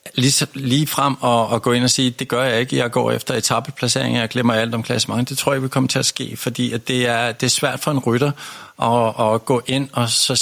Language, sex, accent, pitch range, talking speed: Danish, male, native, 115-130 Hz, 260 wpm